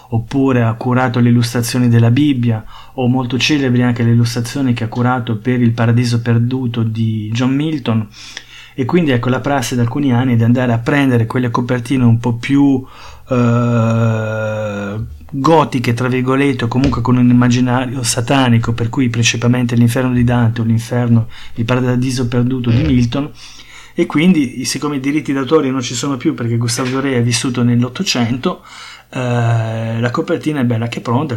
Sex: male